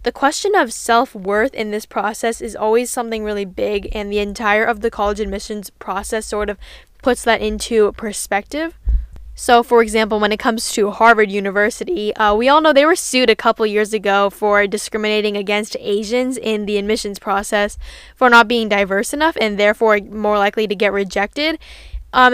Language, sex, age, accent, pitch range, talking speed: English, female, 10-29, American, 210-235 Hz, 180 wpm